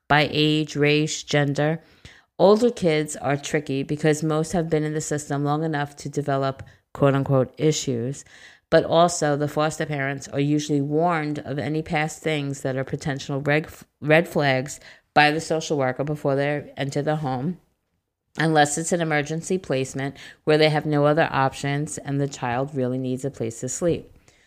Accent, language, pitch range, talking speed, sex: American, English, 135-155 Hz, 165 wpm, female